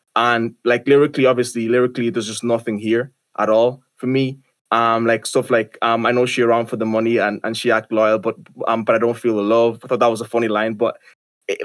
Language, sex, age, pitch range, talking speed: English, male, 20-39, 115-130 Hz, 240 wpm